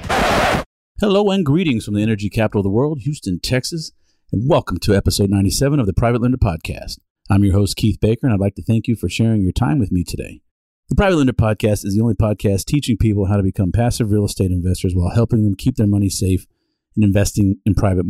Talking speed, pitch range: 225 wpm, 95-115 Hz